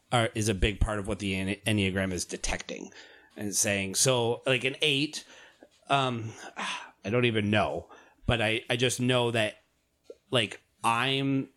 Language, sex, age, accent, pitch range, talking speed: English, male, 30-49, American, 105-130 Hz, 150 wpm